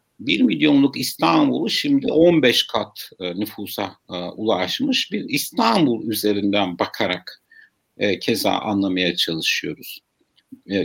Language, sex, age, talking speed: Turkish, male, 60-79, 105 wpm